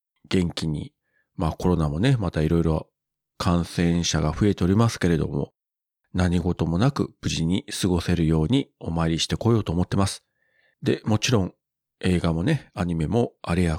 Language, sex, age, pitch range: Japanese, male, 40-59, 80-105 Hz